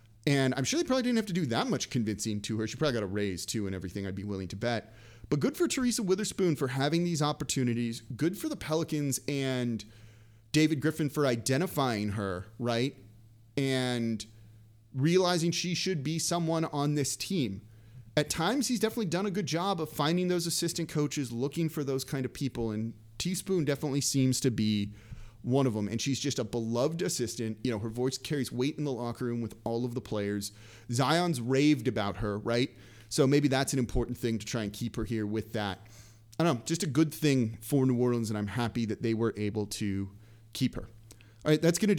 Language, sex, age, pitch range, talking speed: English, male, 30-49, 110-150 Hz, 210 wpm